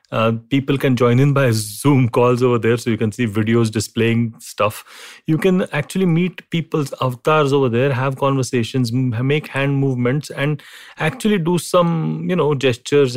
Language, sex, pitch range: English, male, 120-165 Hz